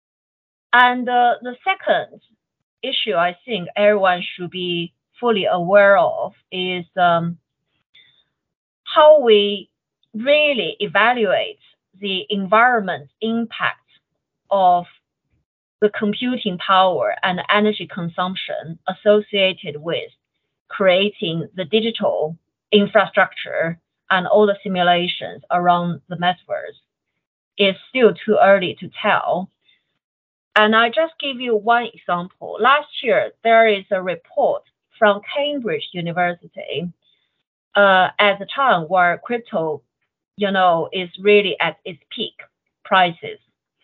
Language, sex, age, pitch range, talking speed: English, female, 30-49, 180-235 Hz, 105 wpm